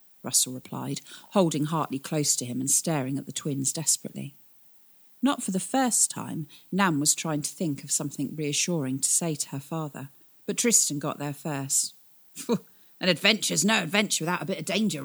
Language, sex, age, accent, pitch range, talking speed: English, female, 40-59, British, 145-220 Hz, 180 wpm